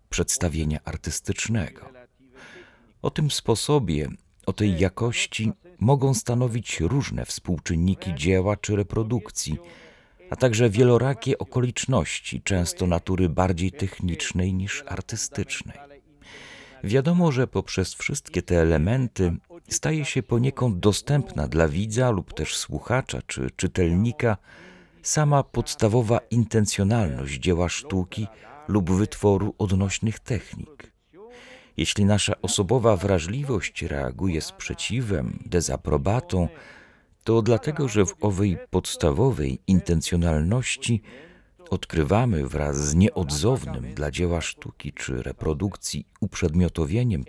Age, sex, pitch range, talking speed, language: 40-59, male, 90-120 Hz, 95 wpm, Polish